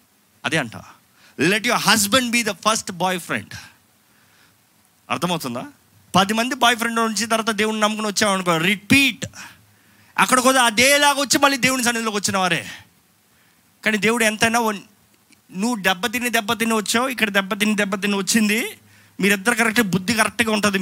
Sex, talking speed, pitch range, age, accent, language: male, 135 wpm, 165-225 Hz, 30-49, native, Telugu